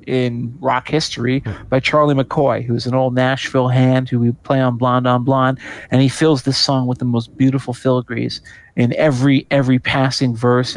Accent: American